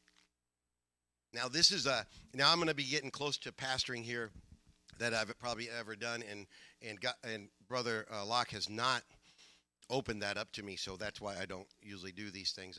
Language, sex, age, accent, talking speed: English, male, 50-69, American, 190 wpm